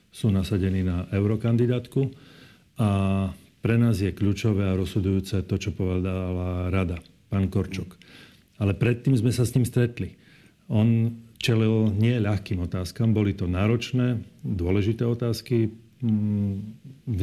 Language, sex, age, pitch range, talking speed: Slovak, male, 40-59, 95-115 Hz, 120 wpm